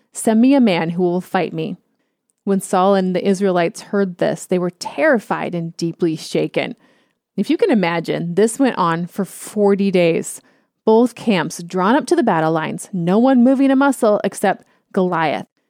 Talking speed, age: 175 wpm, 30-49